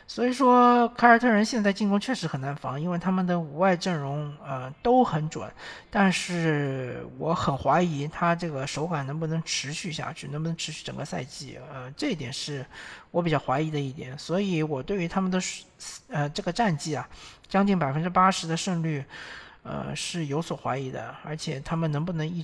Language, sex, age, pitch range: Chinese, male, 50-69, 145-185 Hz